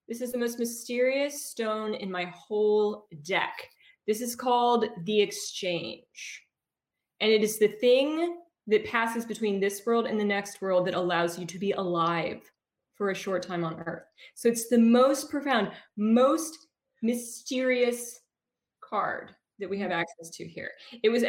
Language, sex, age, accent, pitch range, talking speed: English, female, 20-39, American, 180-235 Hz, 160 wpm